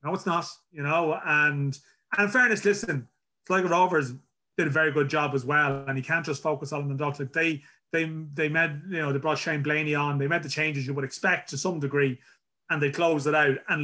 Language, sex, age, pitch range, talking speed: English, male, 30-49, 140-170 Hz, 235 wpm